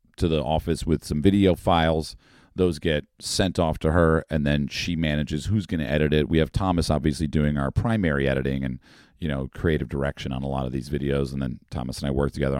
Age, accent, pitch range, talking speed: 40-59, American, 70-80 Hz, 230 wpm